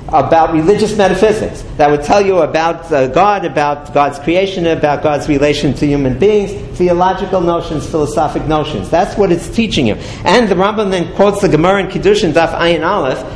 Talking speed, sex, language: 185 wpm, male, English